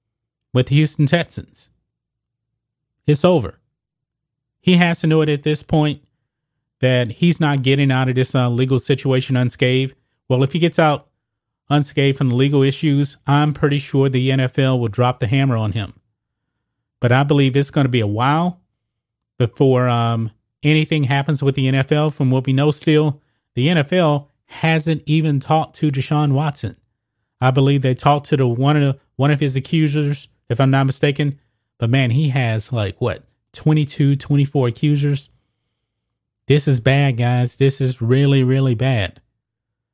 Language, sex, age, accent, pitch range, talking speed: English, male, 30-49, American, 120-150 Hz, 160 wpm